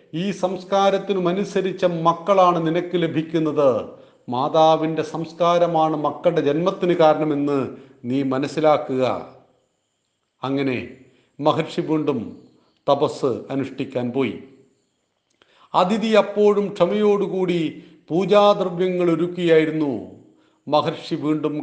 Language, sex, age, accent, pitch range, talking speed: Malayalam, male, 40-59, native, 145-190 Hz, 70 wpm